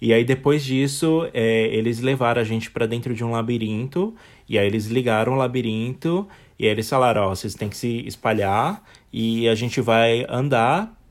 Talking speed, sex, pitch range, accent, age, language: 195 wpm, male, 110-135 Hz, Brazilian, 20-39, Portuguese